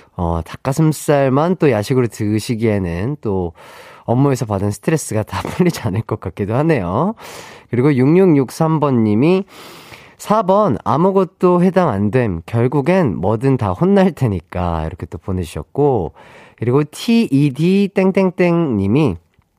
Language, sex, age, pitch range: Korean, male, 30-49, 115-190 Hz